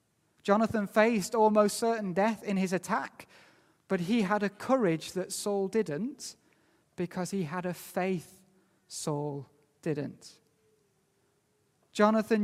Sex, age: male, 30-49